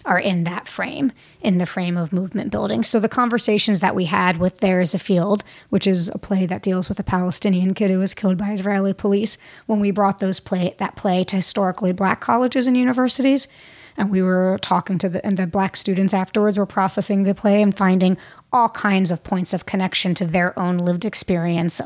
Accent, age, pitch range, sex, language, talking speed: American, 30-49, 180-215 Hz, female, English, 215 wpm